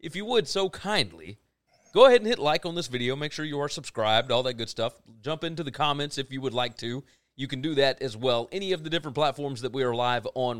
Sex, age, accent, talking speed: male, 30-49, American, 265 wpm